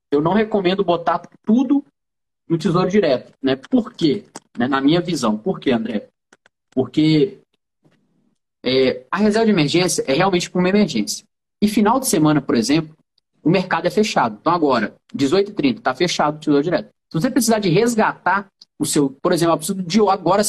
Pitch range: 165-220 Hz